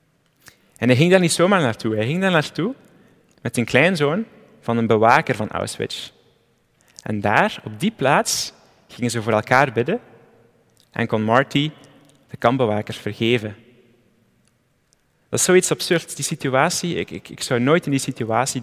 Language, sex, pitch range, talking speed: Dutch, male, 110-140 Hz, 160 wpm